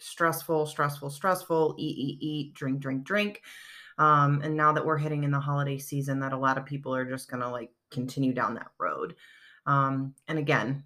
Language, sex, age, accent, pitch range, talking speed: English, female, 30-49, American, 135-160 Hz, 200 wpm